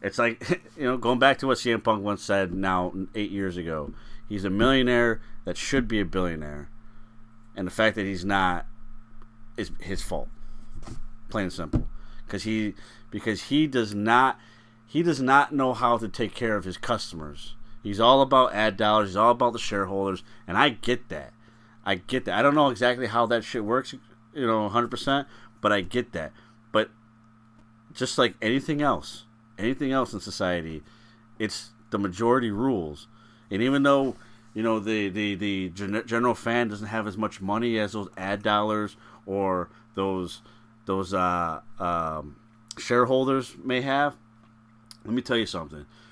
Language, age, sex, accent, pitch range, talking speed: English, 30-49, male, American, 100-120 Hz, 170 wpm